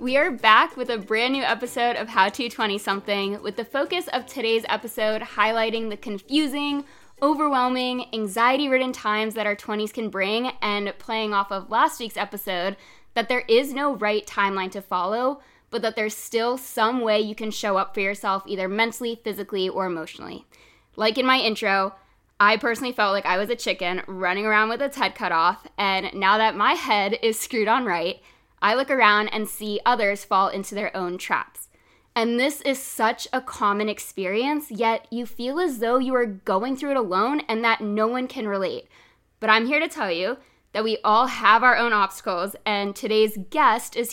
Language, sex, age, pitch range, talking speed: English, female, 20-39, 200-245 Hz, 190 wpm